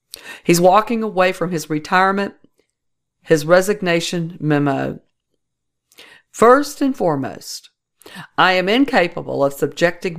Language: English